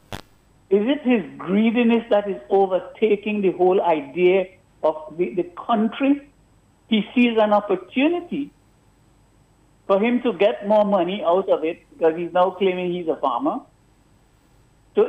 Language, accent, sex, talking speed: English, Indian, male, 140 wpm